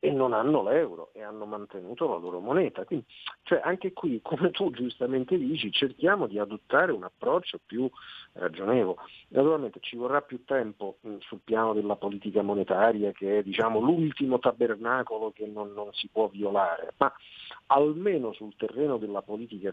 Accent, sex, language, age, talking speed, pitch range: native, male, Italian, 50-69, 160 wpm, 105-125 Hz